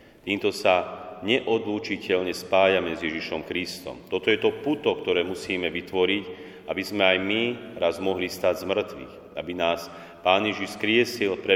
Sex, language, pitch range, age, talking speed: male, Slovak, 90-105 Hz, 40-59, 150 wpm